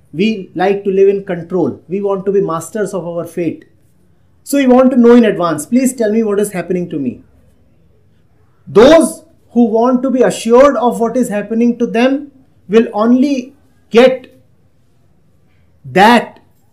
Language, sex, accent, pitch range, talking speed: English, male, Indian, 160-235 Hz, 160 wpm